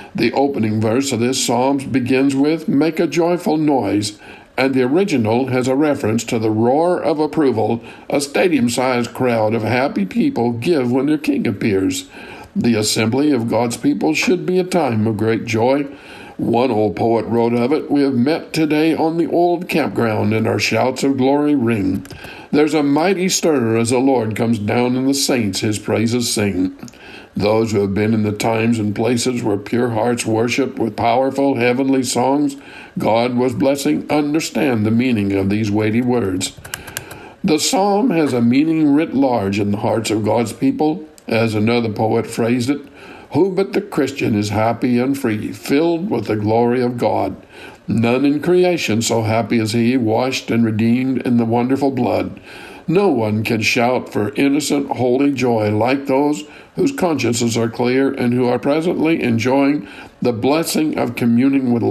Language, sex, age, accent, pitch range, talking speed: English, male, 60-79, American, 110-140 Hz, 175 wpm